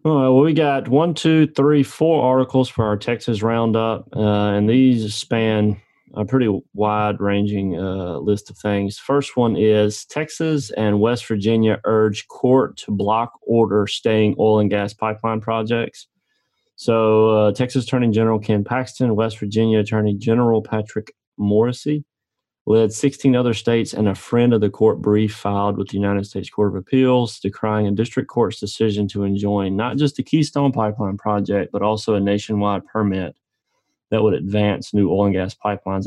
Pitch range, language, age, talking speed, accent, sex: 100-120 Hz, English, 30-49, 165 wpm, American, male